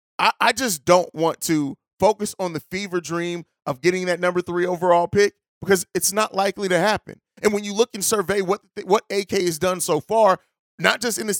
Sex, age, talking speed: male, 30-49, 210 wpm